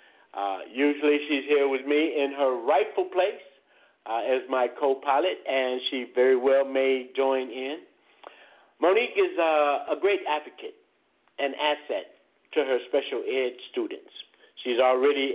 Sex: male